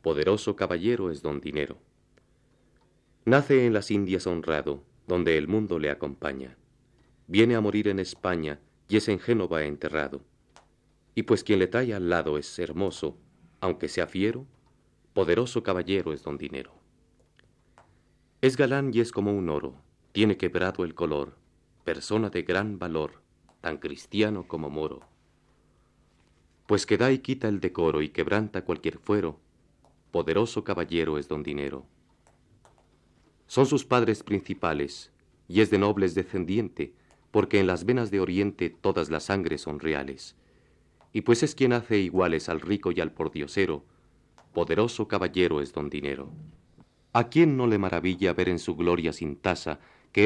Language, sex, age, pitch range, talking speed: Spanish, male, 40-59, 80-110 Hz, 150 wpm